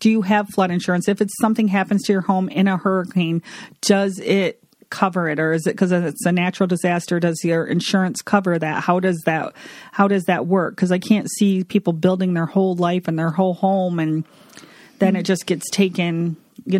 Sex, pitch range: female, 170-195 Hz